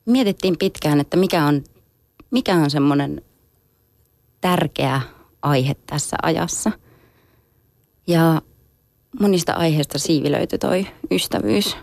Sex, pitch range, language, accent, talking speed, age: female, 140-170 Hz, Finnish, native, 90 wpm, 20-39